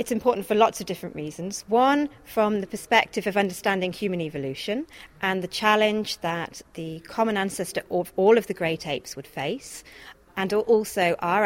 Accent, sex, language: British, female, English